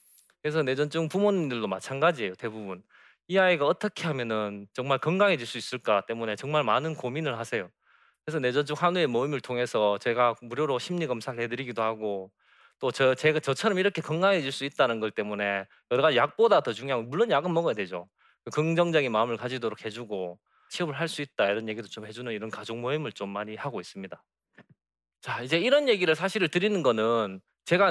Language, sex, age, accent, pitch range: Korean, male, 20-39, native, 115-165 Hz